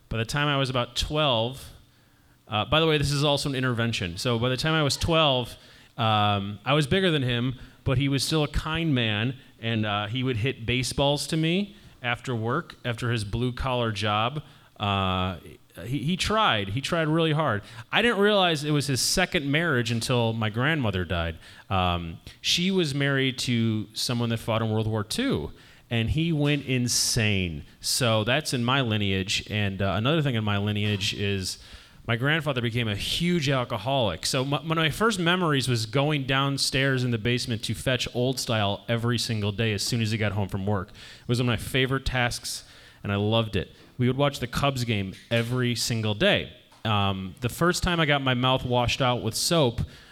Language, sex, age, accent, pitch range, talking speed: English, male, 30-49, American, 110-140 Hz, 200 wpm